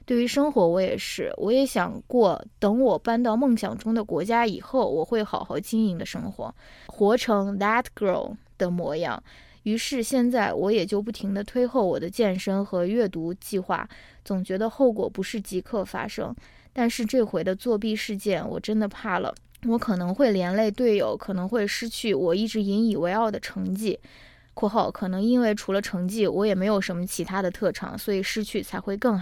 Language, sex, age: Chinese, female, 20-39